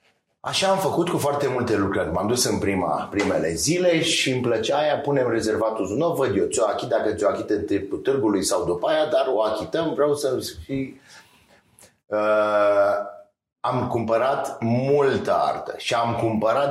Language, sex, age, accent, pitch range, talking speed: Romanian, male, 30-49, native, 115-165 Hz, 160 wpm